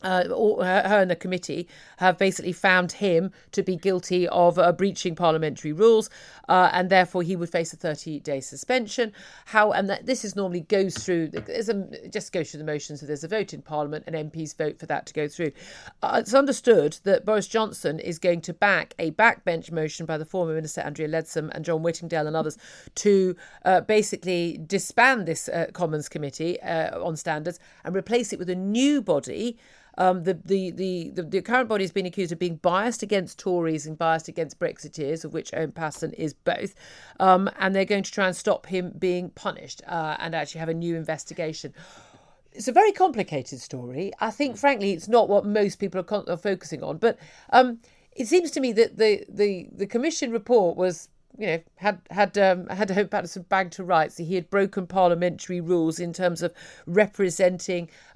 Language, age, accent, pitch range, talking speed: English, 40-59, British, 165-200 Hz, 200 wpm